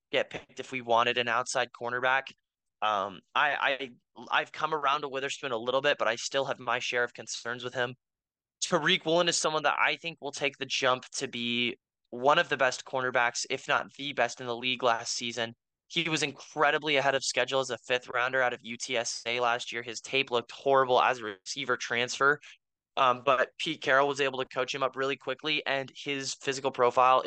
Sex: male